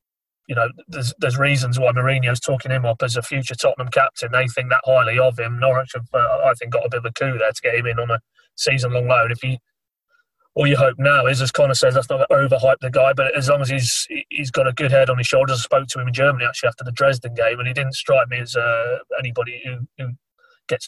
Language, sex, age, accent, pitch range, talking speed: English, male, 30-49, British, 125-145 Hz, 260 wpm